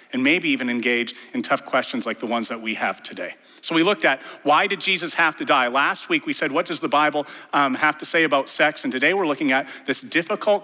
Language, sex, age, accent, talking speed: English, male, 40-59, American, 255 wpm